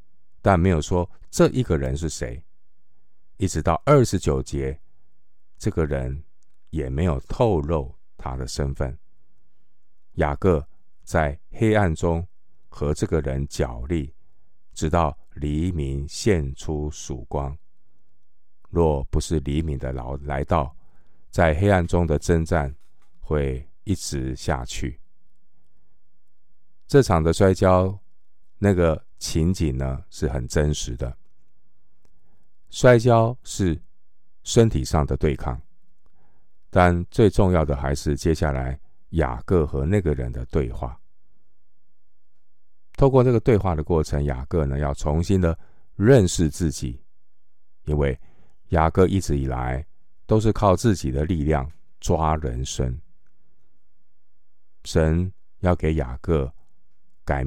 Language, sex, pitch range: Chinese, male, 70-90 Hz